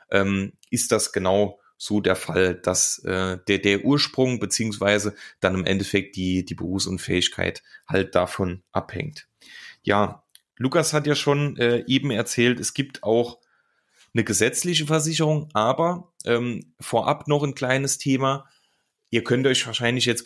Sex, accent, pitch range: male, German, 100-135 Hz